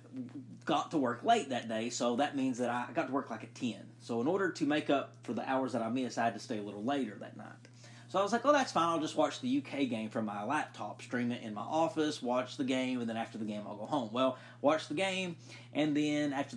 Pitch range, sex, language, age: 120-150 Hz, male, English, 30-49